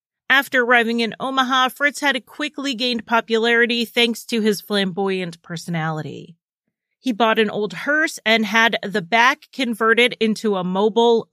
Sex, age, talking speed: female, 30-49, 145 wpm